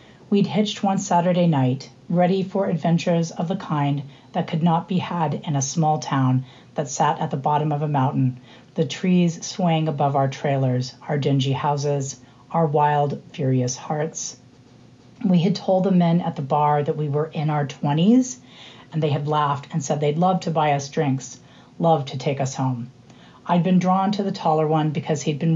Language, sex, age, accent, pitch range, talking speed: English, female, 40-59, American, 135-170 Hz, 195 wpm